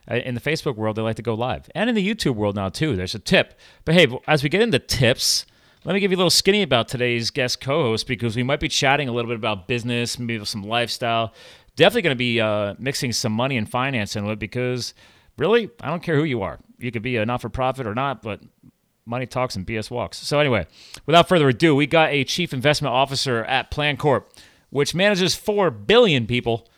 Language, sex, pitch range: English, male, 110-150 Hz